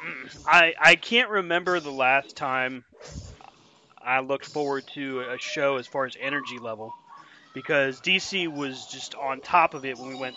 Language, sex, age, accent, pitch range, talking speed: English, male, 30-49, American, 135-180 Hz, 170 wpm